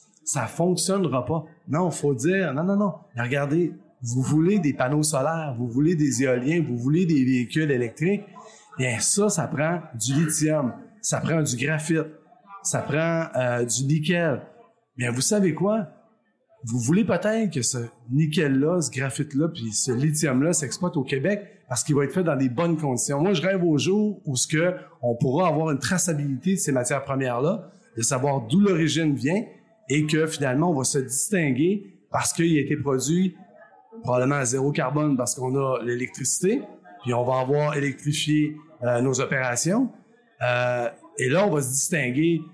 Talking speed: 175 wpm